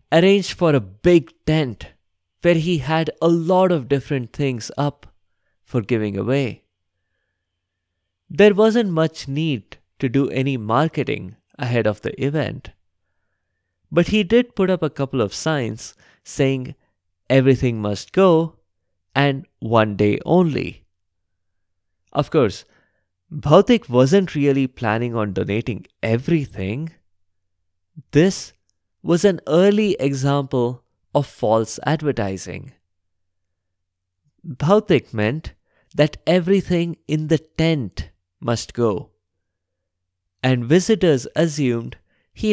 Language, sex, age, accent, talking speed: English, male, 20-39, Indian, 105 wpm